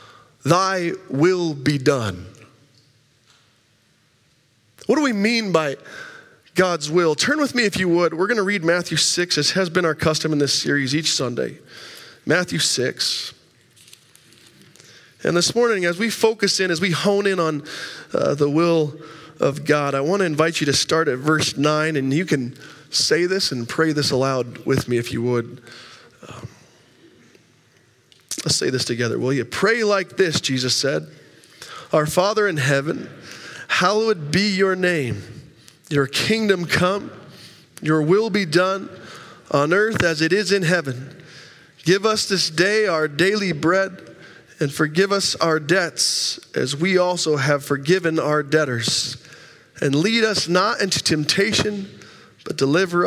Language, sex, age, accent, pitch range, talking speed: English, male, 20-39, American, 135-185 Hz, 155 wpm